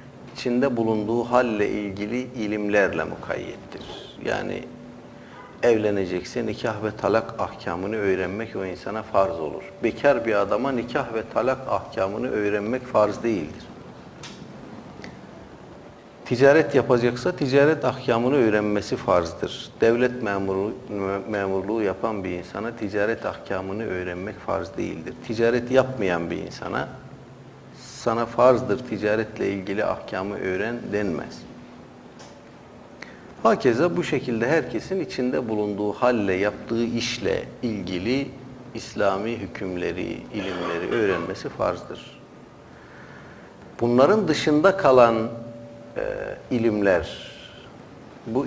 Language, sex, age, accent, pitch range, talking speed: Turkish, male, 50-69, native, 100-125 Hz, 90 wpm